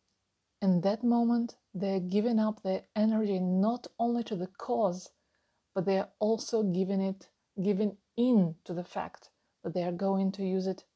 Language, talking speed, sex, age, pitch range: English, 175 wpm, female, 30-49, 190-215 Hz